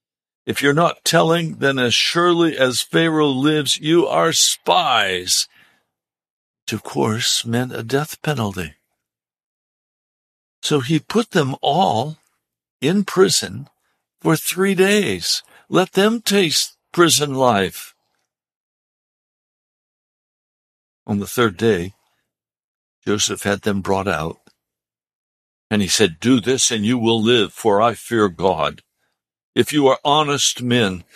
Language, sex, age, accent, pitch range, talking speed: English, male, 60-79, American, 105-150 Hz, 115 wpm